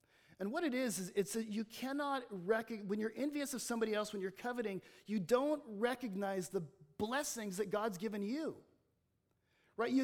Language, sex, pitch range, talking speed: English, male, 195-250 Hz, 175 wpm